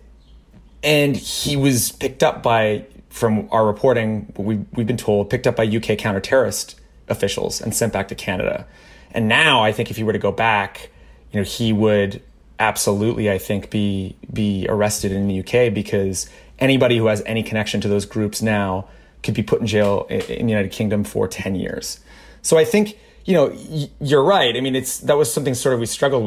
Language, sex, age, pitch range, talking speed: English, male, 30-49, 105-125 Hz, 205 wpm